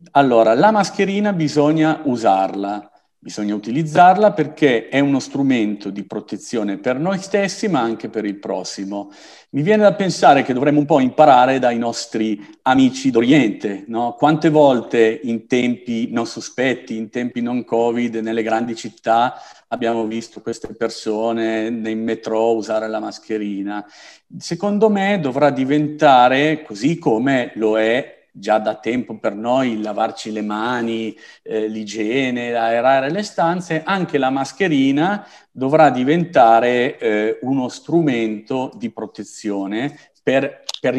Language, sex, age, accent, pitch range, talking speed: Italian, male, 50-69, native, 110-150 Hz, 130 wpm